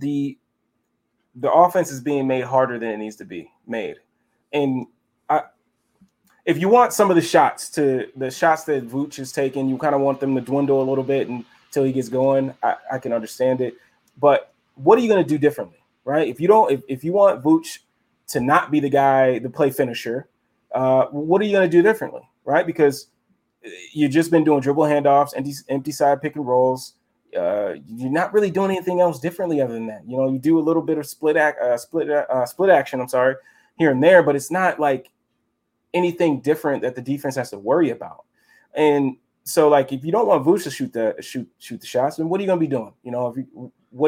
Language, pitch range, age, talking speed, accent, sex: English, 130-165 Hz, 20-39, 225 wpm, American, male